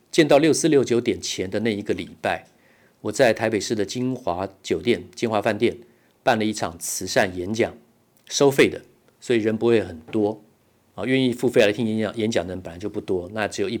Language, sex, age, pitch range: Chinese, male, 50-69, 100-120 Hz